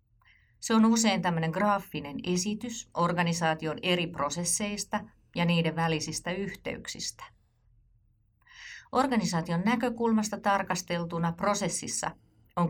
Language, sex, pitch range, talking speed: Finnish, female, 145-220 Hz, 85 wpm